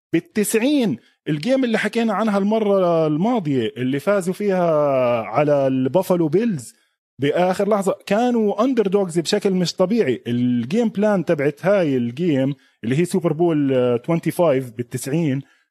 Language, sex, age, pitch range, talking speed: Arabic, male, 20-39, 145-200 Hz, 120 wpm